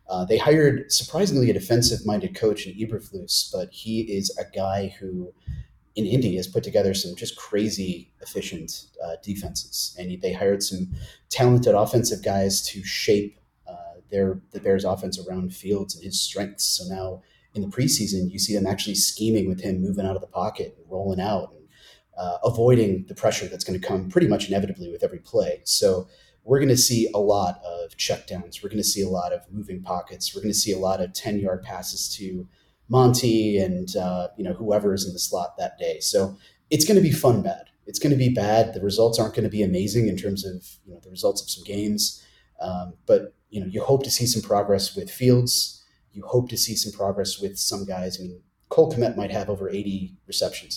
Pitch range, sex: 95-120 Hz, male